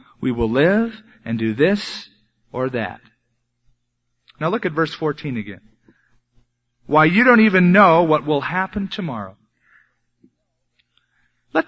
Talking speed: 125 wpm